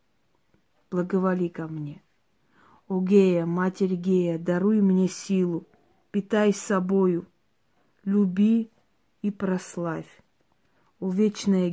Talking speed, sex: 85 wpm, female